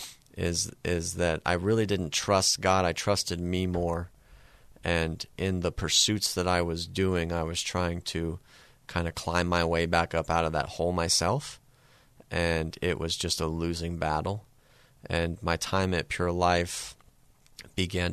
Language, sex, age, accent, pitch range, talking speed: English, male, 30-49, American, 85-105 Hz, 165 wpm